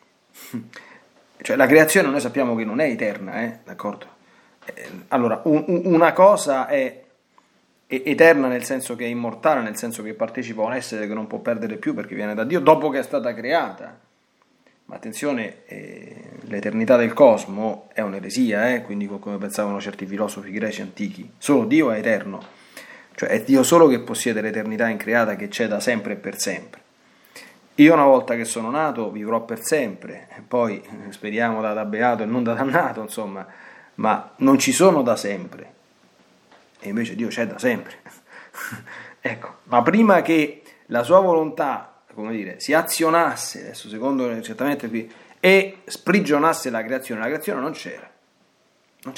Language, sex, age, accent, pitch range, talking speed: Italian, male, 30-49, native, 110-160 Hz, 165 wpm